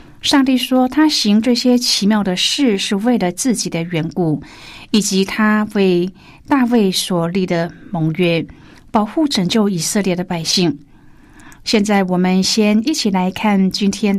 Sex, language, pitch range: female, Chinese, 180-225 Hz